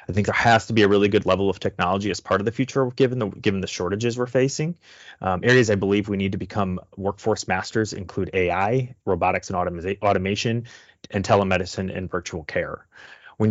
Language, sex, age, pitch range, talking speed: English, male, 30-49, 95-110 Hz, 205 wpm